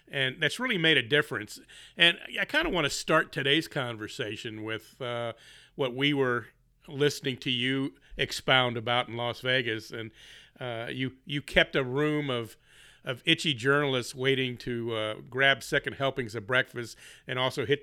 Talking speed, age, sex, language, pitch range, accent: 170 wpm, 40-59, male, English, 120-145 Hz, American